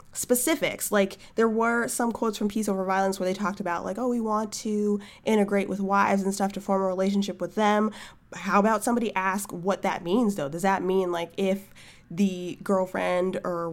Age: 20-39